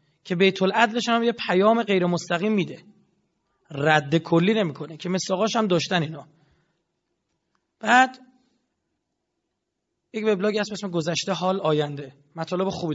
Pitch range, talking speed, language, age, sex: 160-210 Hz, 130 wpm, Persian, 30-49, male